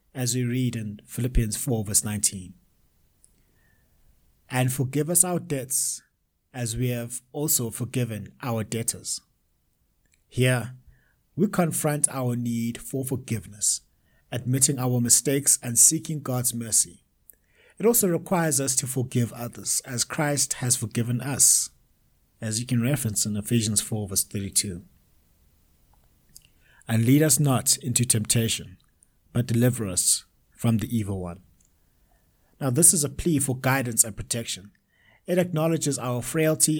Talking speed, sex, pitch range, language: 130 wpm, male, 105-140 Hz, English